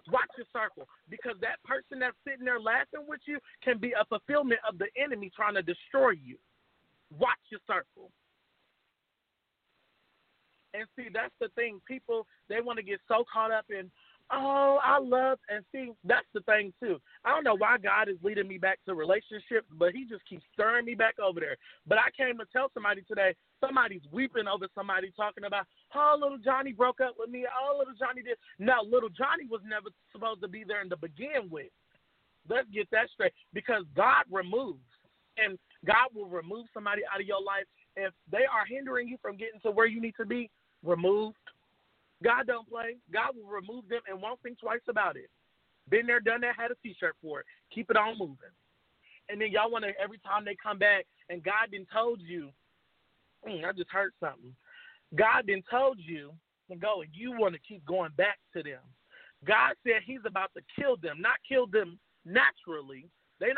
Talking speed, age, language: 195 wpm, 30-49, English